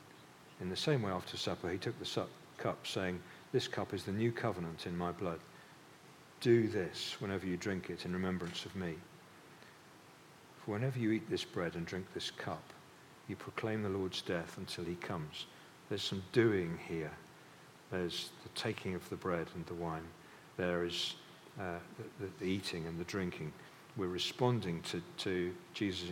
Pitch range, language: 90-105 Hz, English